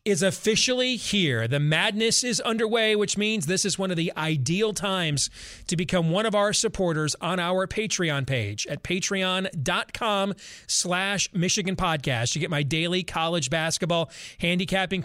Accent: American